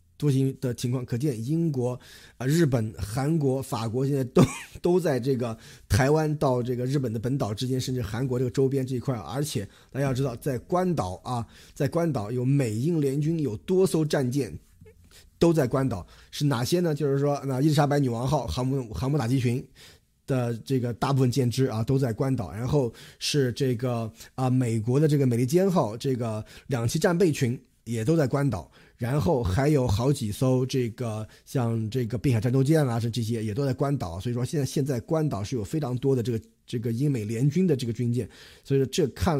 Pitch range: 120-145 Hz